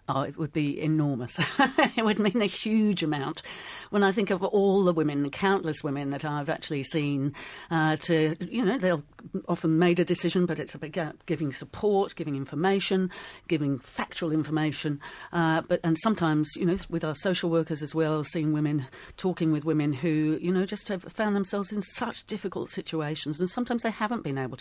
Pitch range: 145-180 Hz